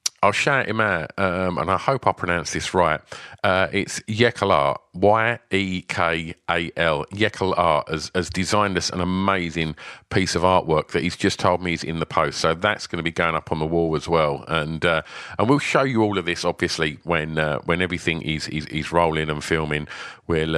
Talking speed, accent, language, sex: 215 wpm, British, English, male